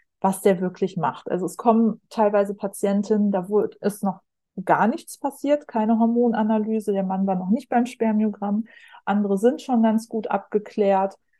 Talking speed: 160 wpm